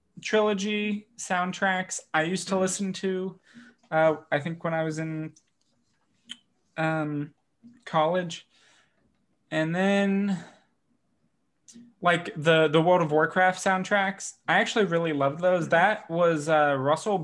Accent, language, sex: American, English, male